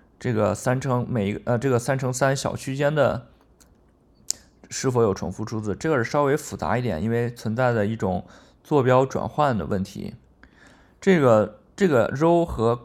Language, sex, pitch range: Chinese, male, 110-135 Hz